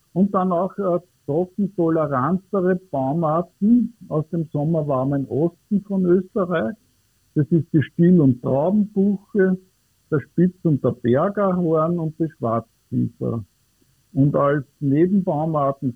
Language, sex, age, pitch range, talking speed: English, male, 60-79, 130-180 Hz, 105 wpm